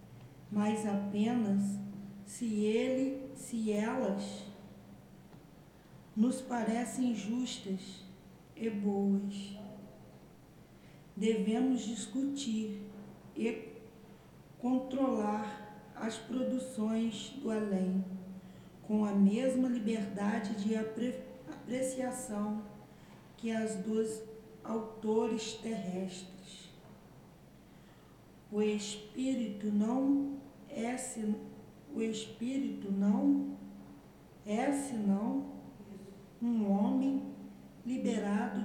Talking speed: 65 wpm